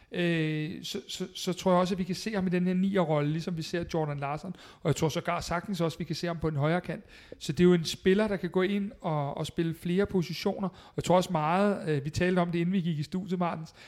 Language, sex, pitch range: Danish, male, 155-185 Hz